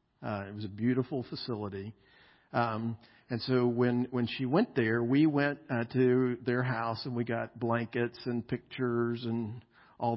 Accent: American